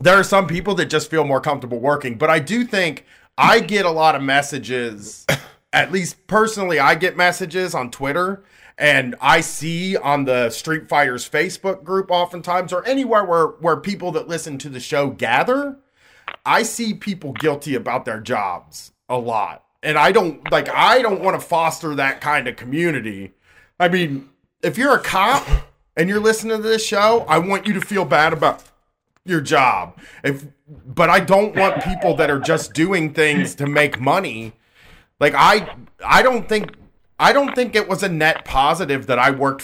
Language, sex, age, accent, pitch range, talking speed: English, male, 30-49, American, 140-195 Hz, 185 wpm